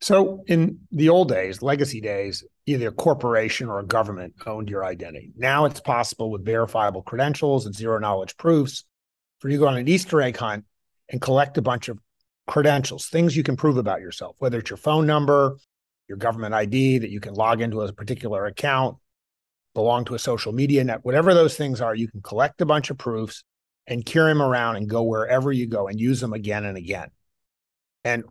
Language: English